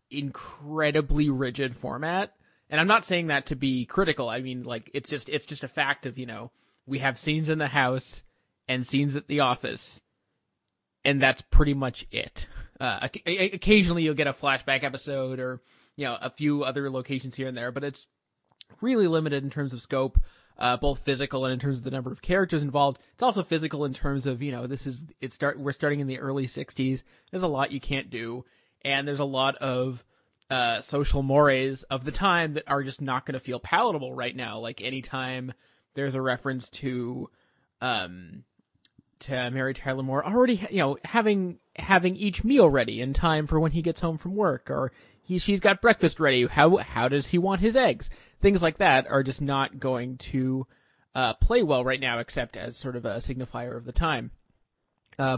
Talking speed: 205 wpm